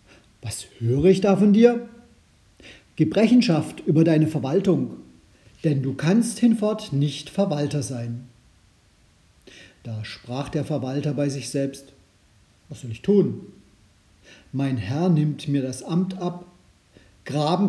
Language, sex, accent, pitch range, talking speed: German, male, German, 125-195 Hz, 120 wpm